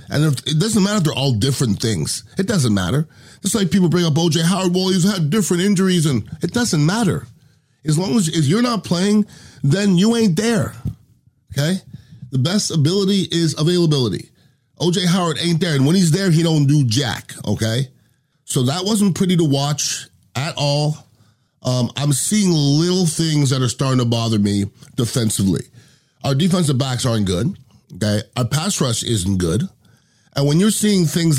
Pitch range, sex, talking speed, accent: 125-170 Hz, male, 180 wpm, American